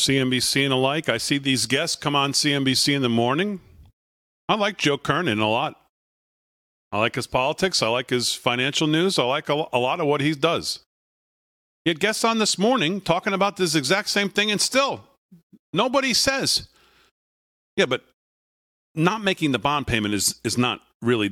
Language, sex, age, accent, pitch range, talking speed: English, male, 40-59, American, 125-190 Hz, 175 wpm